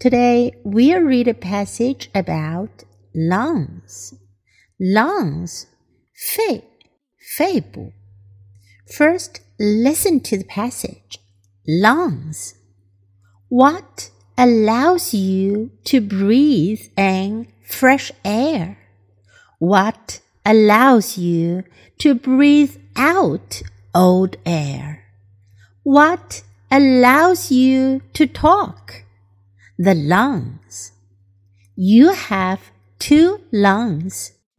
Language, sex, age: Chinese, female, 60-79